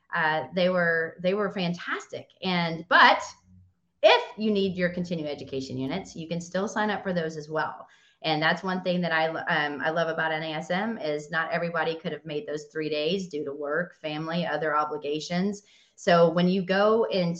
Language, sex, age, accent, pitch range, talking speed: English, female, 30-49, American, 160-200 Hz, 190 wpm